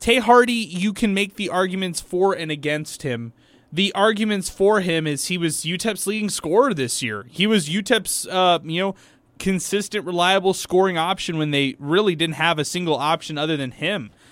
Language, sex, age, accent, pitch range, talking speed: English, male, 20-39, American, 145-185 Hz, 175 wpm